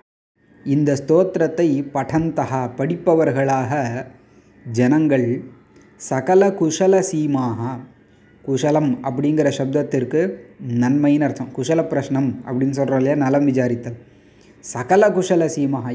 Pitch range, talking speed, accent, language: 130-160 Hz, 85 wpm, native, Tamil